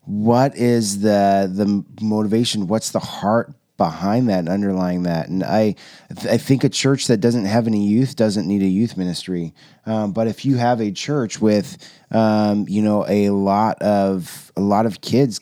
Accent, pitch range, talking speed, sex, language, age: American, 105-125 Hz, 185 wpm, male, English, 20-39